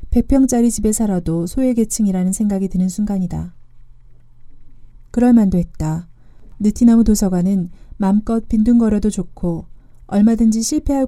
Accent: native